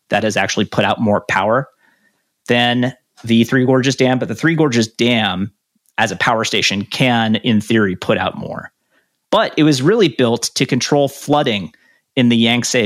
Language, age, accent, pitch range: English, 30-49, American, 115-150 Hz